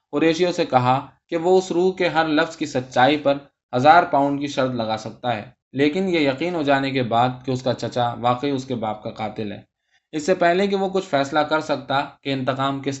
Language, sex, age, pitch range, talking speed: Urdu, male, 20-39, 120-150 Hz, 230 wpm